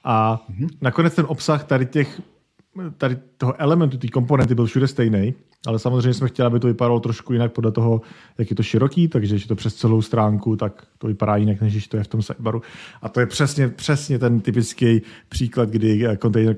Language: Czech